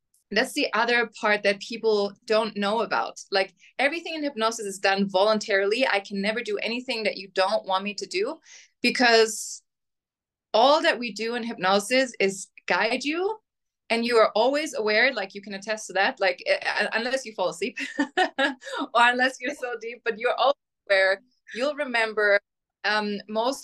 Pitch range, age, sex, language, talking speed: 195-250 Hz, 20-39, female, English, 175 wpm